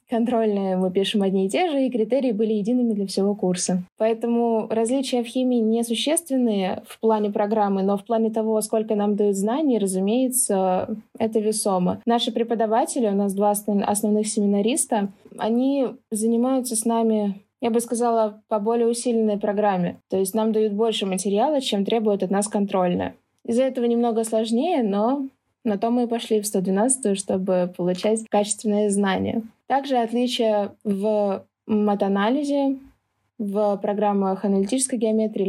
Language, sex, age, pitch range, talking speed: Russian, female, 20-39, 200-235 Hz, 145 wpm